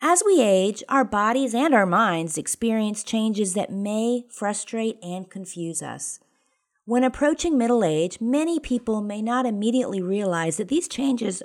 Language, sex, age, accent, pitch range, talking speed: English, female, 50-69, American, 195-260 Hz, 150 wpm